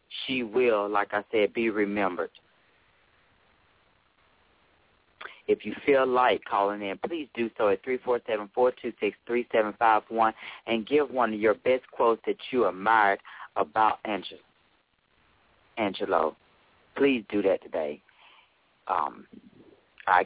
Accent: American